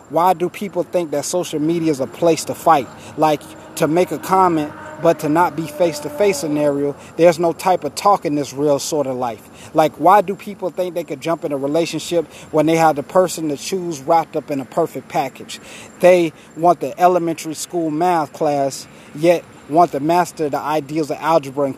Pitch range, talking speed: 140-170 Hz, 205 wpm